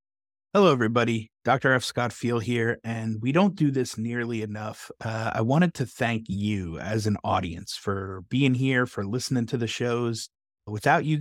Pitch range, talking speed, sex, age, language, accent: 110-135 Hz, 175 wpm, male, 30-49, English, American